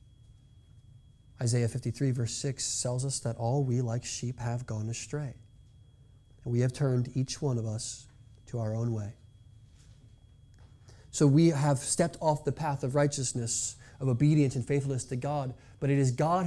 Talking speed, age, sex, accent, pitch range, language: 165 wpm, 30-49, male, American, 115-150 Hz, English